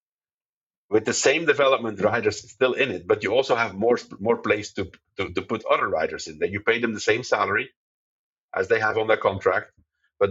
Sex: male